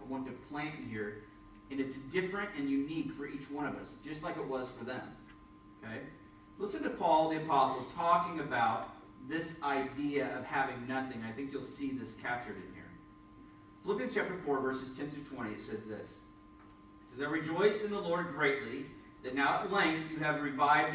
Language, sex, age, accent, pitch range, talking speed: English, male, 40-59, American, 130-180 Hz, 190 wpm